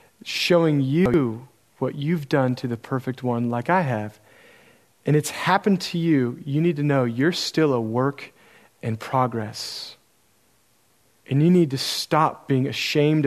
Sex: male